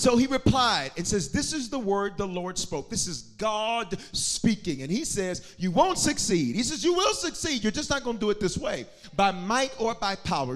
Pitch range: 170-235 Hz